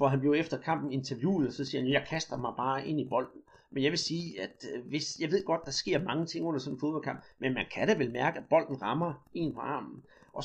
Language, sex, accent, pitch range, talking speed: Danish, male, native, 135-165 Hz, 270 wpm